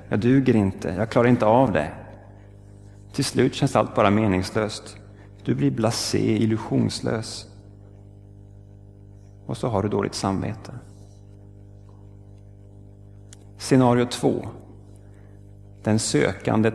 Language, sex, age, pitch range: Swedish, male, 30-49, 100-125 Hz